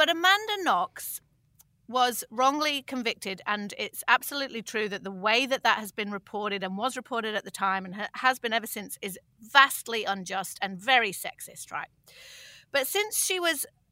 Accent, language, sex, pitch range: British, English, female, 210-265 Hz